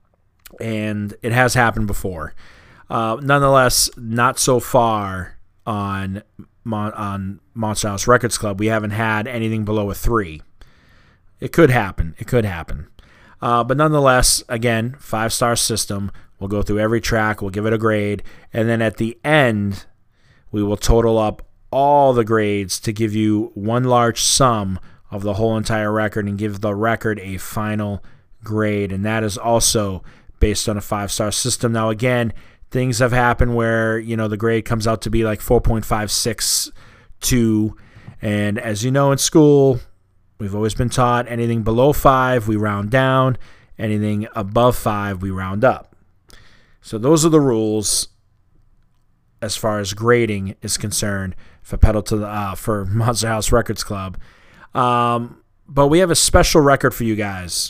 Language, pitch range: English, 105-120 Hz